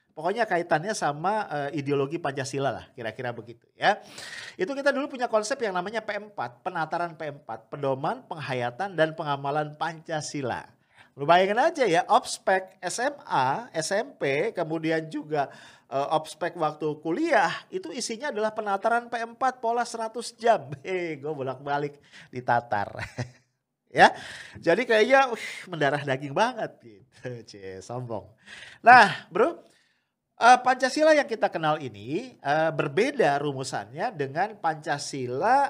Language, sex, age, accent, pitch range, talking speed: English, male, 40-59, Indonesian, 140-215 Hz, 115 wpm